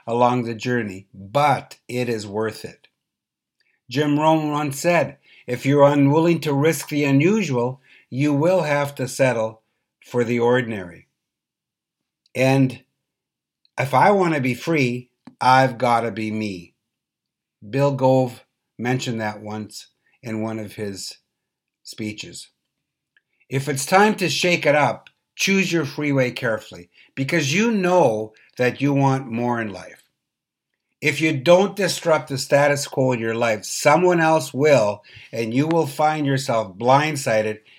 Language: English